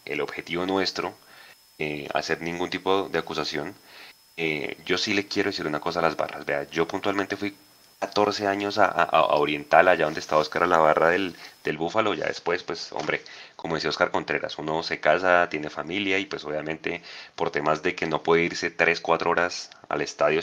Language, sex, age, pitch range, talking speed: Spanish, male, 30-49, 75-95 Hz, 200 wpm